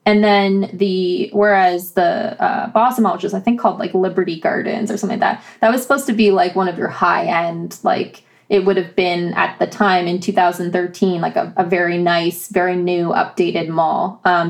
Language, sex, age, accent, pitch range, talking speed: English, female, 20-39, American, 180-205 Hz, 210 wpm